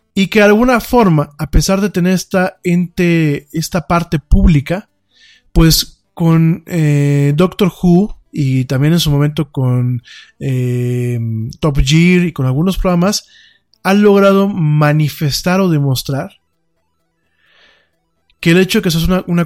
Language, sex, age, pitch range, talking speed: Spanish, male, 20-39, 140-180 Hz, 140 wpm